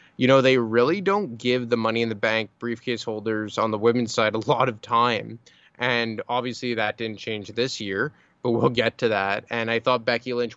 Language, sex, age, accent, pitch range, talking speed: English, male, 20-39, American, 110-125 Hz, 215 wpm